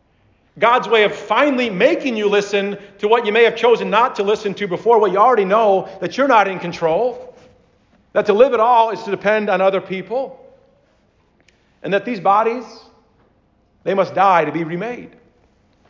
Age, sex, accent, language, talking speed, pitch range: 50-69, male, American, English, 180 wpm, 140-220 Hz